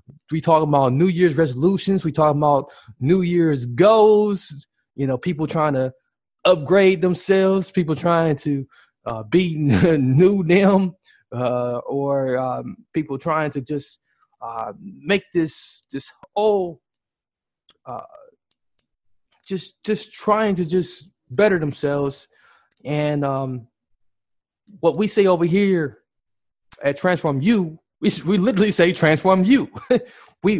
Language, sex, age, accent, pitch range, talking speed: English, male, 20-39, American, 135-180 Hz, 125 wpm